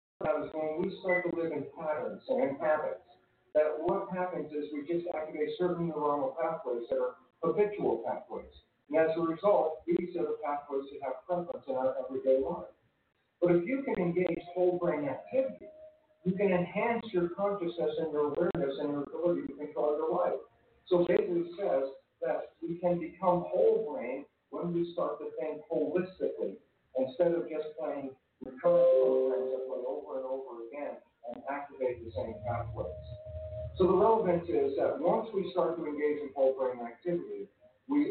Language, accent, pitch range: English, American, 135-180 Hz